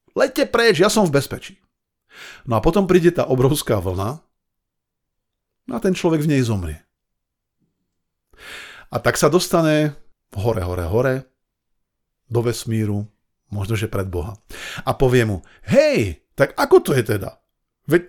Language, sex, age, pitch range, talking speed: Slovak, male, 50-69, 105-160 Hz, 145 wpm